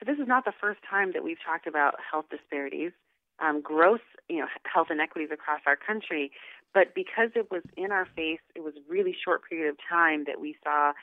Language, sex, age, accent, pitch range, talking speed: English, female, 30-49, American, 150-200 Hz, 220 wpm